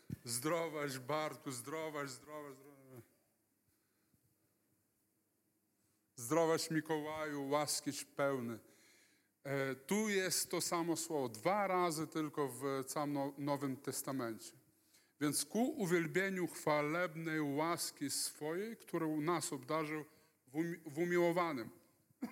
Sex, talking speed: male, 85 wpm